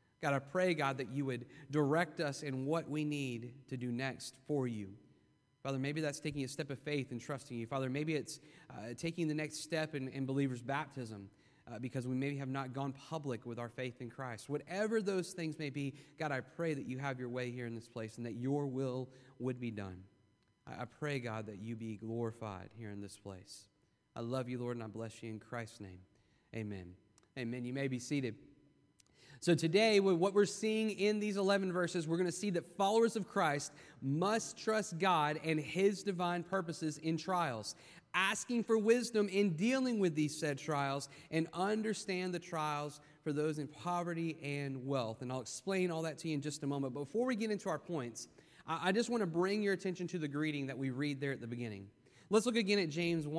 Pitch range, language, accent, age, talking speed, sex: 125-170 Hz, English, American, 30-49, 215 wpm, male